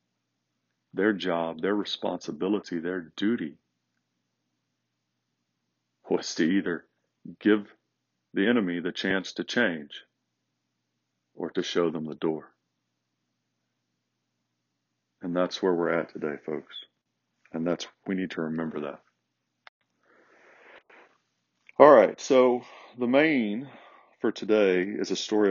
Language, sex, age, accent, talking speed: English, male, 40-59, American, 110 wpm